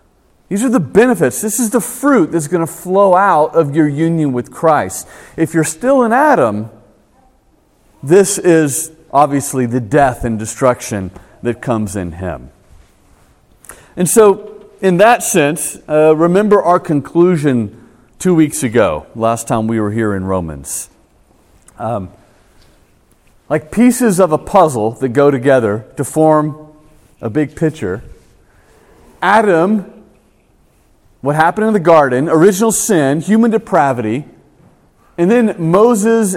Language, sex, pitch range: English, male, 115-180 Hz